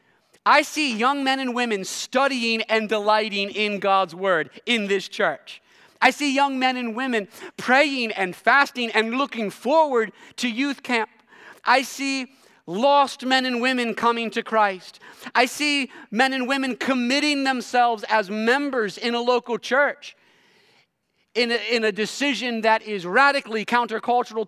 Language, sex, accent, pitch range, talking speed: English, male, American, 215-275 Hz, 145 wpm